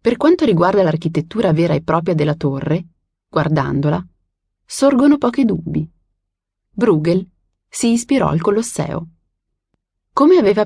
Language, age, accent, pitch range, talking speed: Italian, 30-49, native, 150-220 Hz, 115 wpm